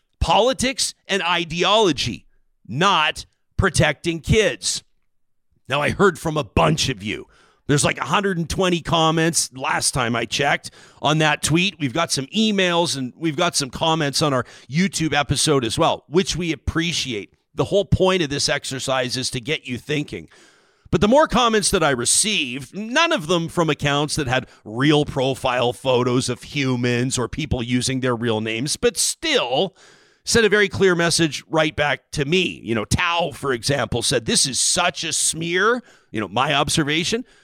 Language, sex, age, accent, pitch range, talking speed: English, male, 50-69, American, 135-195 Hz, 170 wpm